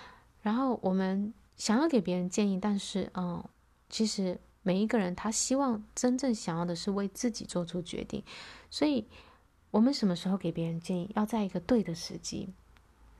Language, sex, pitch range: Chinese, female, 180-225 Hz